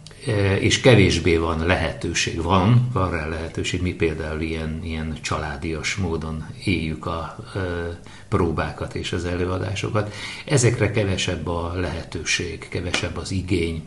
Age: 50-69